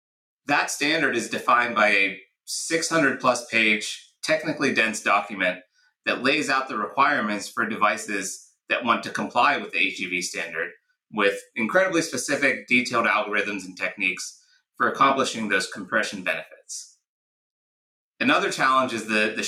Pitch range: 105-145 Hz